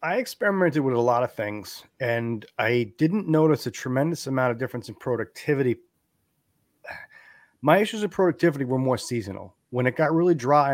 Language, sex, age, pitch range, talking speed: English, male, 30-49, 115-150 Hz, 170 wpm